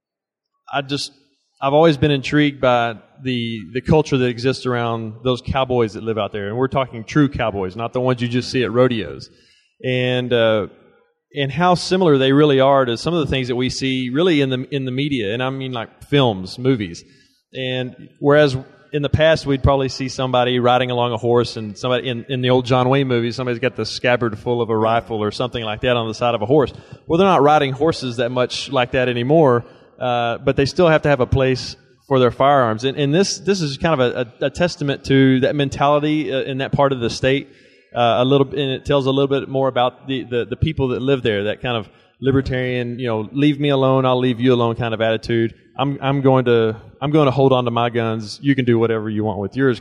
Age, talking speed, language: 30-49, 235 wpm, English